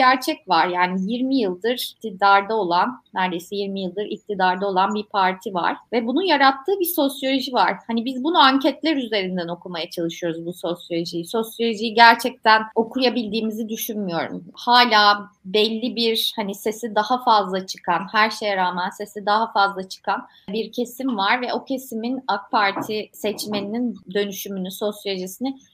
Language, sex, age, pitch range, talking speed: Turkish, female, 30-49, 200-265 Hz, 140 wpm